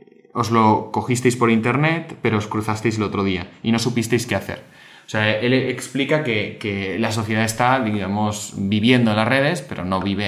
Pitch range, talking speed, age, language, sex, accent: 105-120 Hz, 195 wpm, 20-39, Spanish, male, Spanish